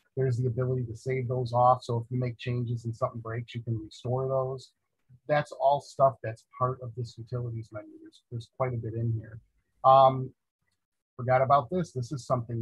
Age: 40-59